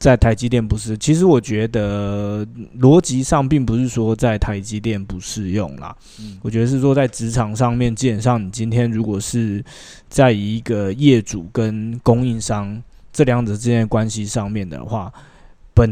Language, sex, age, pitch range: Chinese, male, 20-39, 105-125 Hz